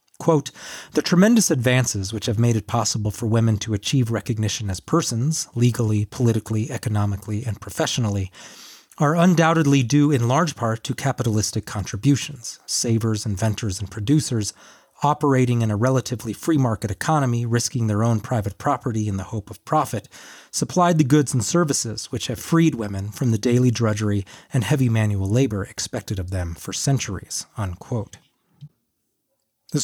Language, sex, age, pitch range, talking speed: English, male, 30-49, 105-135 Hz, 140 wpm